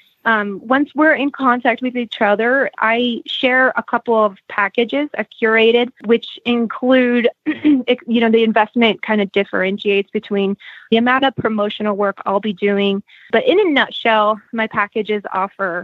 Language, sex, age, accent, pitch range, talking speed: English, female, 20-39, American, 205-245 Hz, 155 wpm